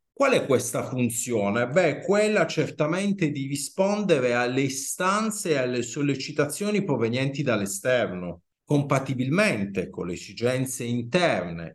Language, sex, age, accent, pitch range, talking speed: Italian, male, 50-69, native, 120-200 Hz, 105 wpm